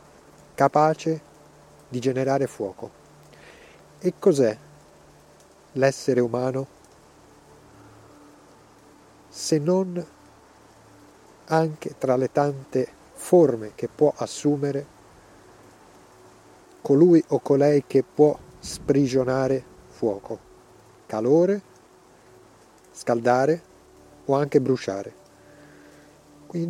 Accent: native